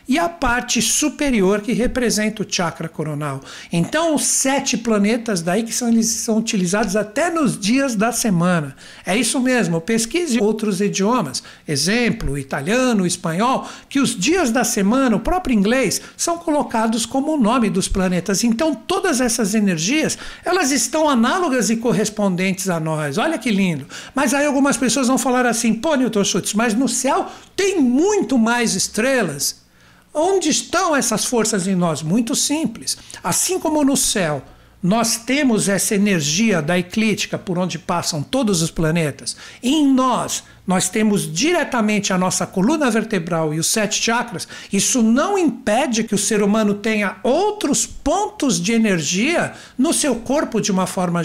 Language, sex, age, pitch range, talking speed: Portuguese, male, 60-79, 195-270 Hz, 155 wpm